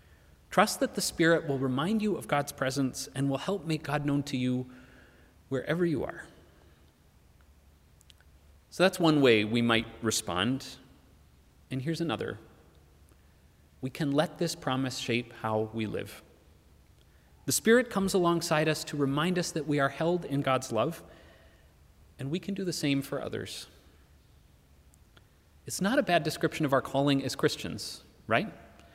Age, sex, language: 30-49, male, English